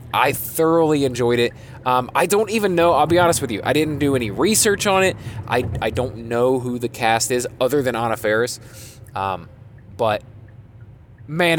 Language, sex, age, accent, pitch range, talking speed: English, male, 20-39, American, 110-140 Hz, 185 wpm